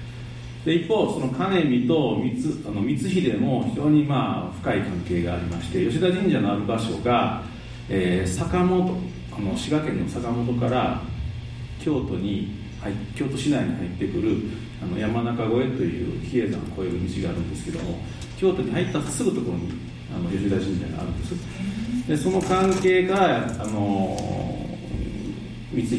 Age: 40-59